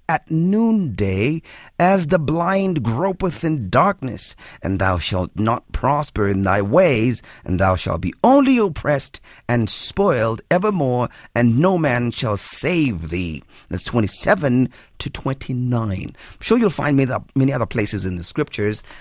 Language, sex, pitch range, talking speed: English, male, 110-175 Hz, 140 wpm